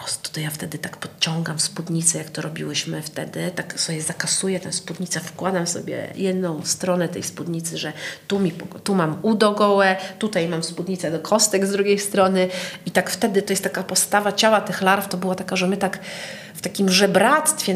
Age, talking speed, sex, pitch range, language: 40-59, 180 wpm, female, 170-200 Hz, Polish